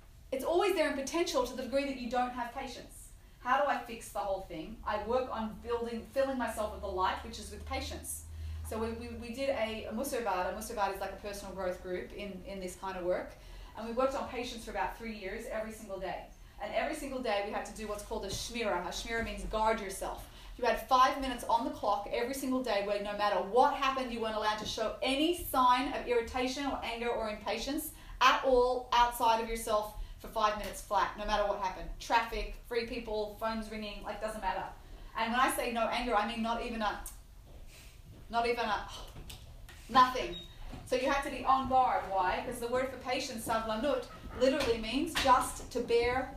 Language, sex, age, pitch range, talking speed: English, female, 30-49, 210-265 Hz, 215 wpm